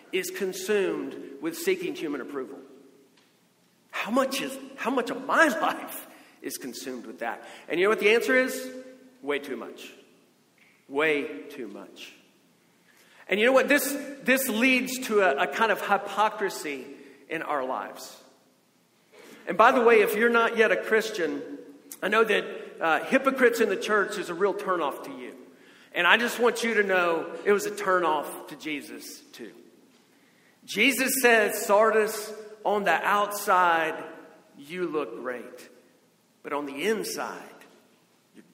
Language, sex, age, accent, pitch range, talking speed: English, male, 50-69, American, 195-265 Hz, 155 wpm